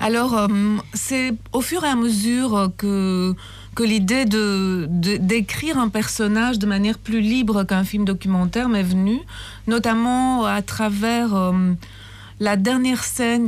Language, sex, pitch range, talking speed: Italian, female, 185-225 Hz, 145 wpm